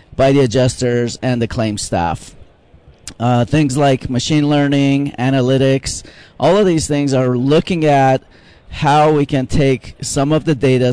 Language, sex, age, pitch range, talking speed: English, male, 40-59, 115-145 Hz, 155 wpm